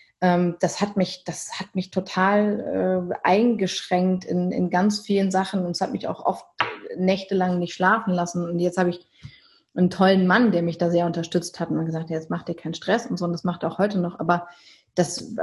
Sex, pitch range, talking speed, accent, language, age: female, 175-195 Hz, 215 wpm, German, German, 30-49